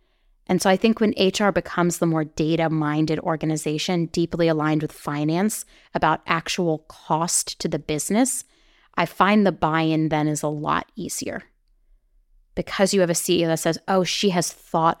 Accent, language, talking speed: American, English, 165 wpm